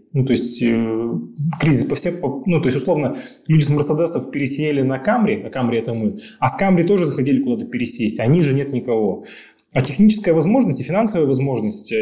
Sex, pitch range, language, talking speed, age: male, 125-165 Hz, Russian, 185 wpm, 20-39